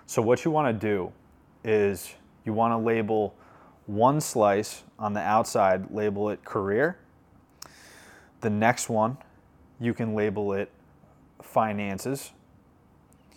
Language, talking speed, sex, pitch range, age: English, 120 wpm, male, 100-120 Hz, 20-39